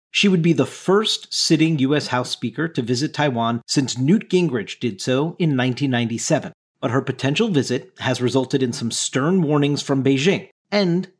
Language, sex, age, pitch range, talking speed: English, male, 50-69, 125-165 Hz, 170 wpm